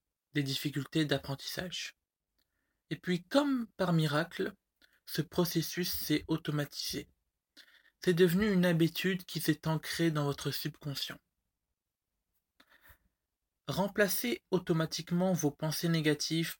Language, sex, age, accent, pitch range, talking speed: French, male, 20-39, French, 145-170 Hz, 100 wpm